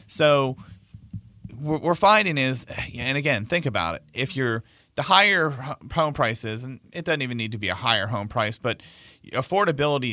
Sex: male